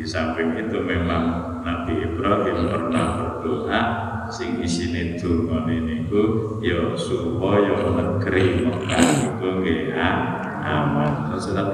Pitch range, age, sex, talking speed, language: 90-115 Hz, 50-69, male, 110 wpm, Indonesian